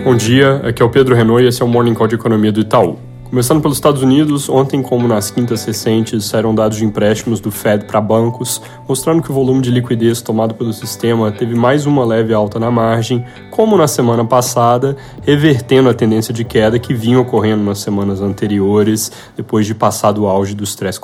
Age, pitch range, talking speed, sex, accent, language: 10-29, 110-125 Hz, 205 wpm, male, Brazilian, Portuguese